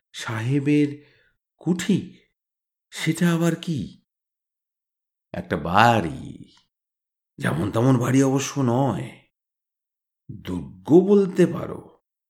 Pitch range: 115-170 Hz